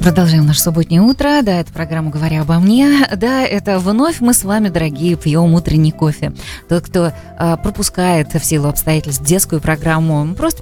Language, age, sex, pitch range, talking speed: Russian, 20-39, female, 160-220 Hz, 170 wpm